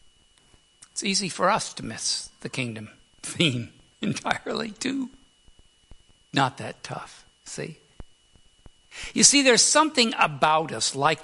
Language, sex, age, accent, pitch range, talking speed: English, male, 60-79, American, 155-255 Hz, 115 wpm